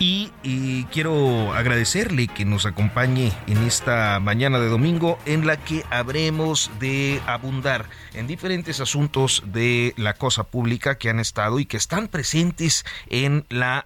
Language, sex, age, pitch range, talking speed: Spanish, male, 40-59, 105-140 Hz, 145 wpm